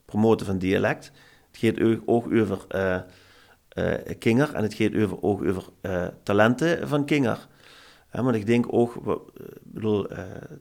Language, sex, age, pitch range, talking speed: Dutch, male, 40-59, 105-120 Hz, 145 wpm